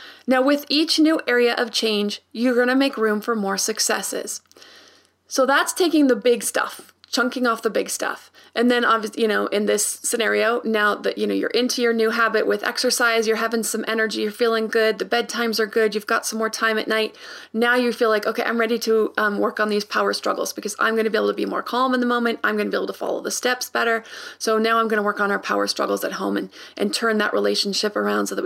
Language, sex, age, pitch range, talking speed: English, female, 30-49, 215-245 Hz, 250 wpm